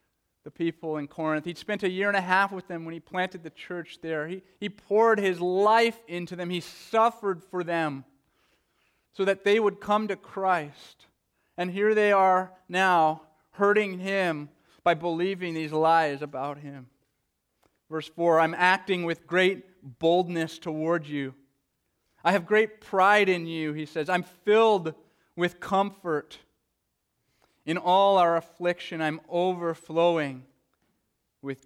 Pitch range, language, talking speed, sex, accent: 145-185 Hz, English, 150 wpm, male, American